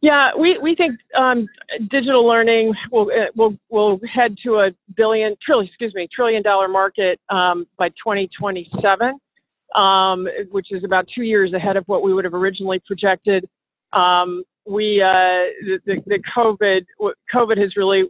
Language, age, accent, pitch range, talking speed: English, 40-59, American, 185-220 Hz, 160 wpm